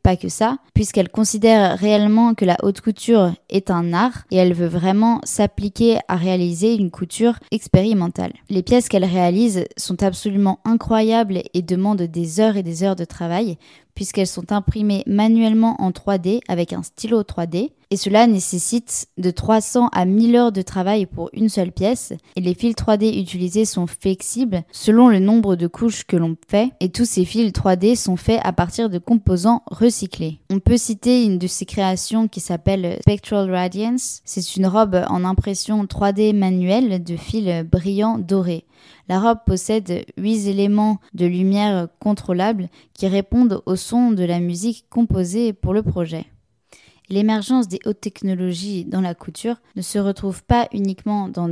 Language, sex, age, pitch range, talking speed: French, female, 20-39, 180-220 Hz, 165 wpm